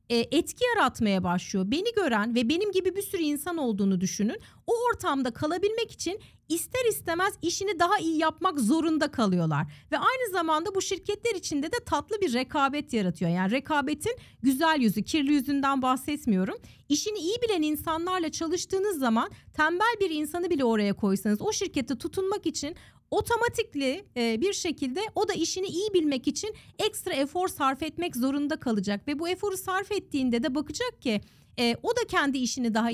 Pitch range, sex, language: 240-350 Hz, female, Turkish